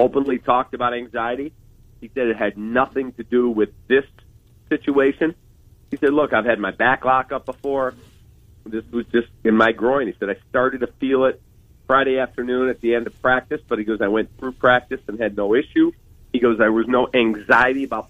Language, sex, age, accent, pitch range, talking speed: English, male, 40-59, American, 110-125 Hz, 205 wpm